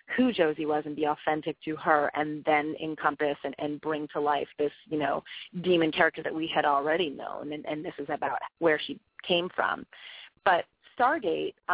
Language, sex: English, female